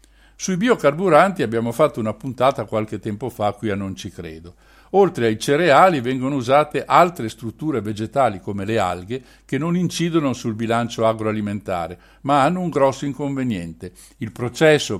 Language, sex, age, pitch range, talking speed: Italian, male, 60-79, 105-145 Hz, 150 wpm